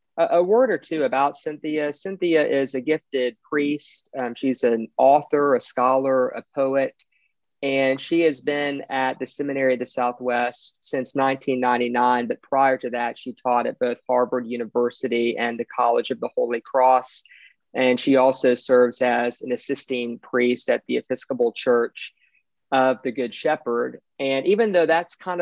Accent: American